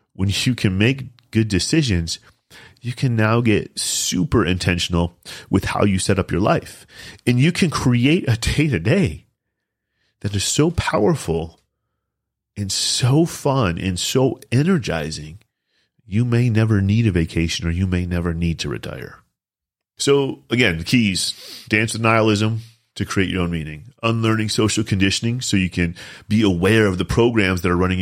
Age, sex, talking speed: 30-49, male, 160 wpm